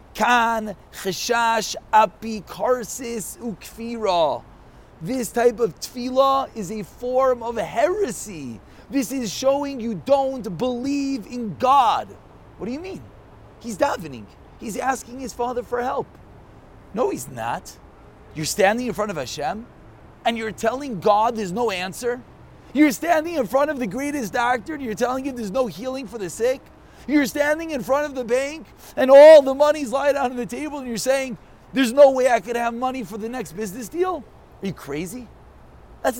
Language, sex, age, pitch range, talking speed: English, male, 30-49, 215-265 Hz, 170 wpm